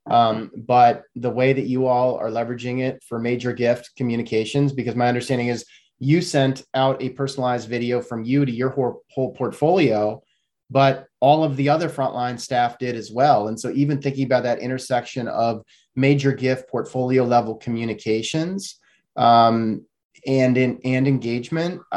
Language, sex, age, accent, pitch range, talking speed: English, male, 30-49, American, 120-135 Hz, 160 wpm